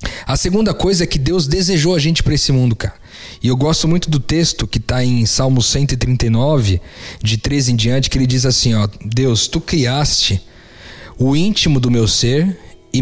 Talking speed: 200 wpm